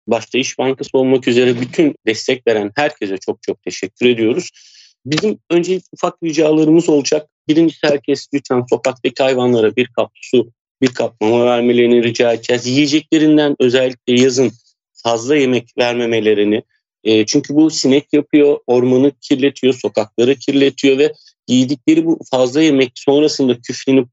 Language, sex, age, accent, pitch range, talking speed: Turkish, male, 40-59, native, 125-155 Hz, 135 wpm